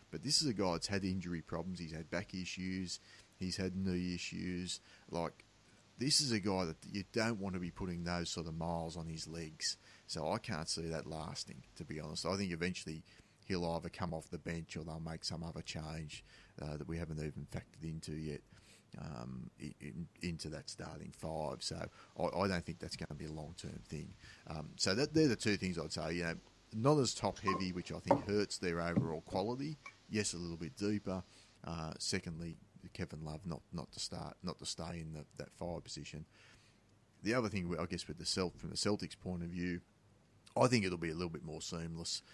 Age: 30-49